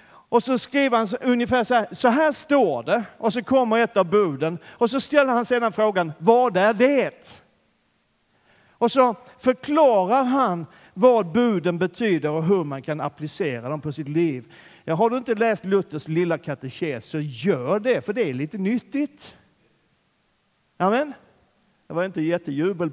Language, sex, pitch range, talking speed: Swedish, male, 170-240 Hz, 160 wpm